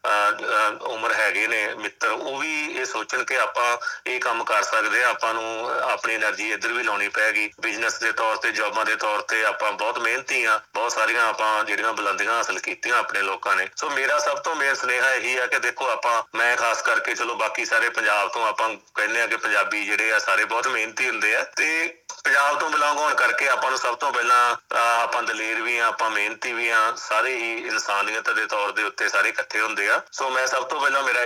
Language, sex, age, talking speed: Punjabi, male, 30-49, 215 wpm